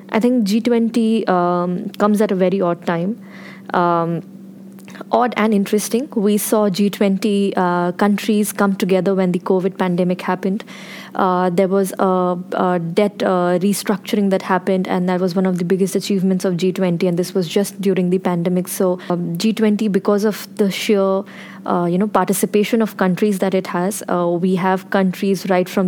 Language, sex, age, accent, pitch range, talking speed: English, female, 20-39, Indian, 185-210 Hz, 175 wpm